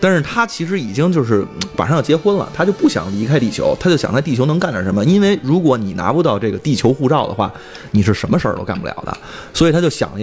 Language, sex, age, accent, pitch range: Chinese, male, 20-39, native, 110-165 Hz